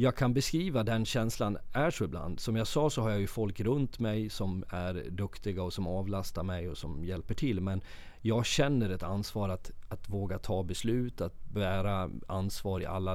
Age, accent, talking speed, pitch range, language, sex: 30-49, native, 200 wpm, 90-110 Hz, Swedish, male